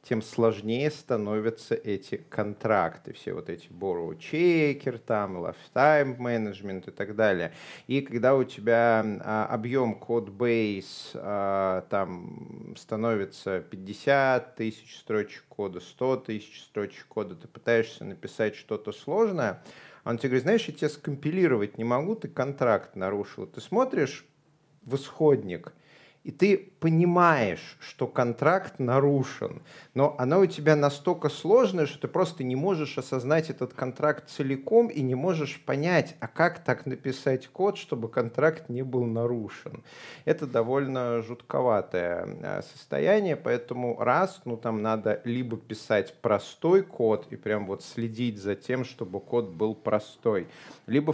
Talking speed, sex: 135 wpm, male